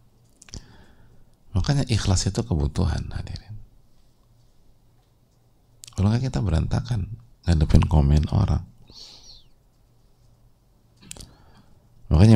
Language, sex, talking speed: English, male, 65 wpm